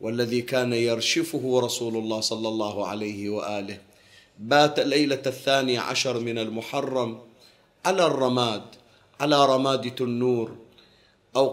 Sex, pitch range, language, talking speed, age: male, 110-140 Hz, Arabic, 110 wpm, 40-59